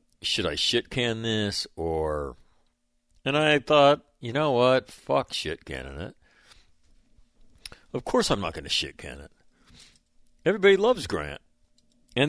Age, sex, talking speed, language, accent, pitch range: 60-79, male, 140 wpm, English, American, 80-100 Hz